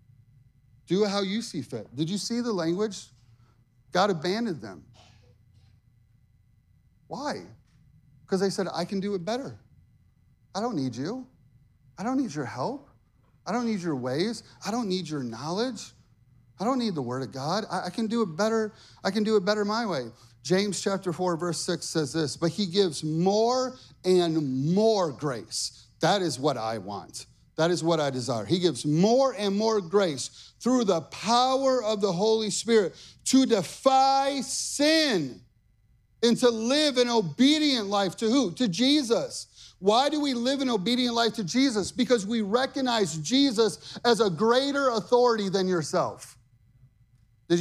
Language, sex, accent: English, male, American